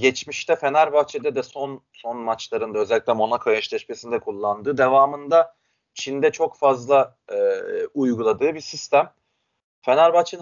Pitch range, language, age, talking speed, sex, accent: 125-165 Hz, Turkish, 30-49, 110 wpm, male, native